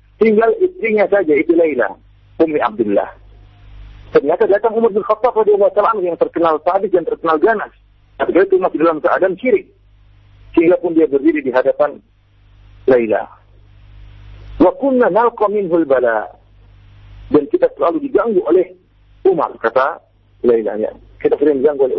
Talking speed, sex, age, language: 130 wpm, male, 50-69, Malay